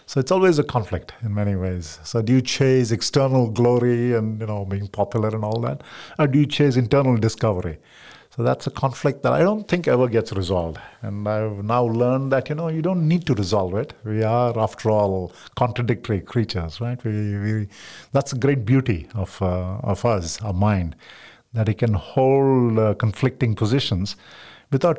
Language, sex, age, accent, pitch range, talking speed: English, male, 50-69, Indian, 100-135 Hz, 190 wpm